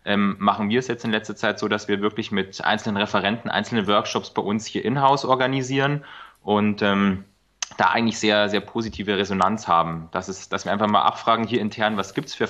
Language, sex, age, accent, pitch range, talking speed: German, male, 30-49, German, 100-125 Hz, 205 wpm